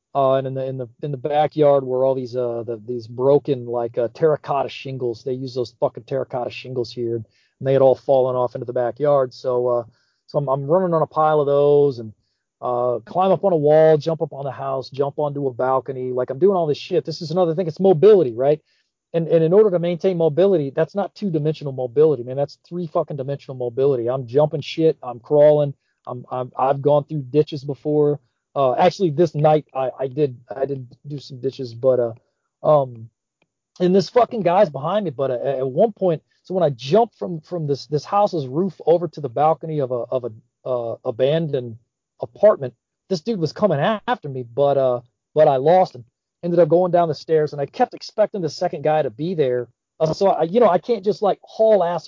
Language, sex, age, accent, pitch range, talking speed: English, male, 40-59, American, 130-165 Hz, 220 wpm